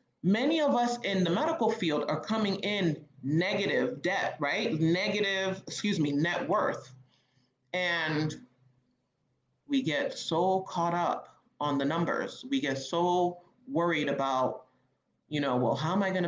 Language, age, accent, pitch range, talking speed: English, 30-49, American, 130-180 Hz, 145 wpm